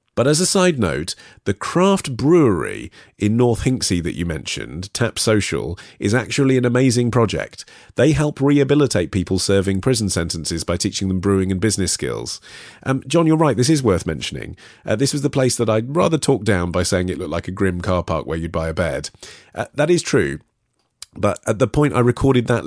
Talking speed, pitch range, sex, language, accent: 205 wpm, 90-140 Hz, male, English, British